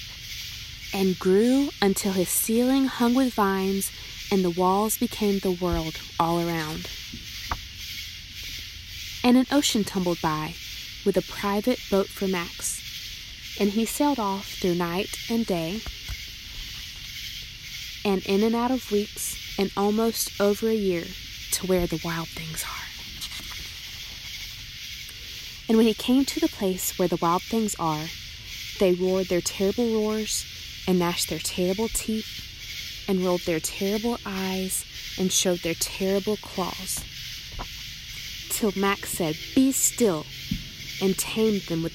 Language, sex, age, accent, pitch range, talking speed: English, female, 20-39, American, 135-210 Hz, 135 wpm